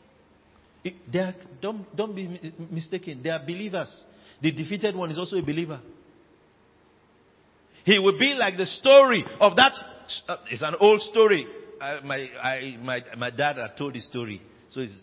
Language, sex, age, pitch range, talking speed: English, male, 50-69, 150-220 Hz, 160 wpm